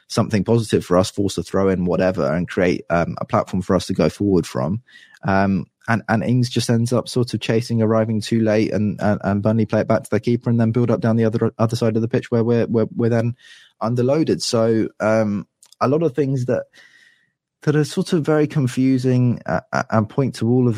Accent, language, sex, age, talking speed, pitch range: British, English, male, 20-39, 230 wpm, 90-115 Hz